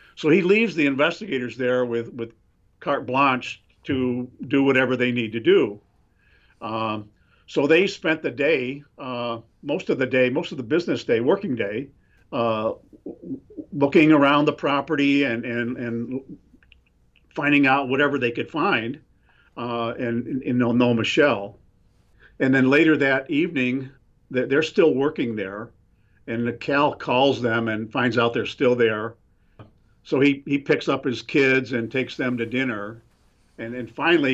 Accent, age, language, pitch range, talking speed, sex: American, 50-69, English, 115-135 Hz, 155 wpm, male